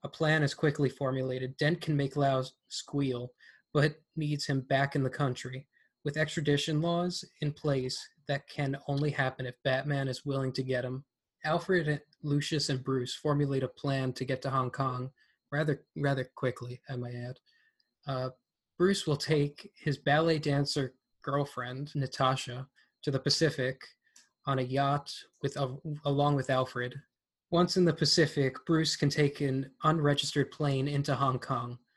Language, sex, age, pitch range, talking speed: English, male, 20-39, 130-150 Hz, 155 wpm